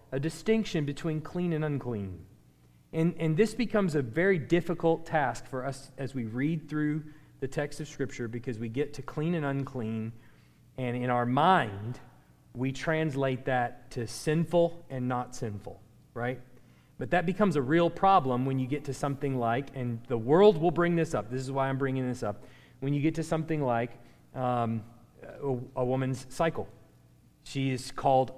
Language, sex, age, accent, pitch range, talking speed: English, male, 30-49, American, 125-165 Hz, 175 wpm